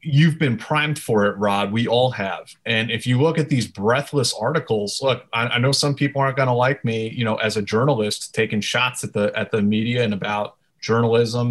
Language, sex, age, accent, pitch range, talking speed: English, male, 30-49, American, 115-145 Hz, 225 wpm